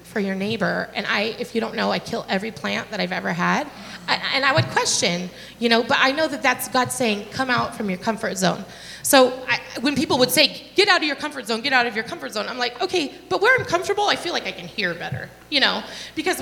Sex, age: female, 30-49